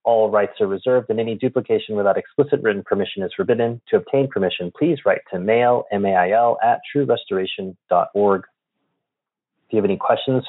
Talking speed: 160 wpm